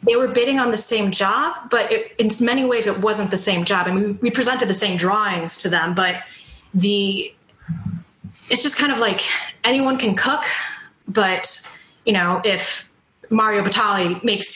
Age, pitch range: 30-49, 190-240 Hz